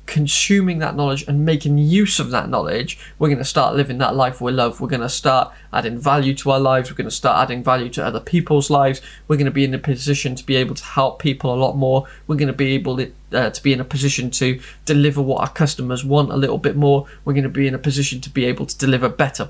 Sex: male